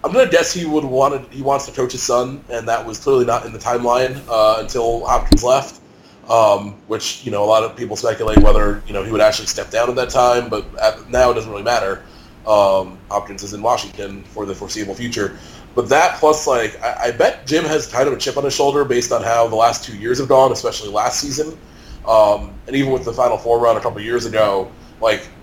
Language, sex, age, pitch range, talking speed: English, male, 20-39, 105-130 Hz, 240 wpm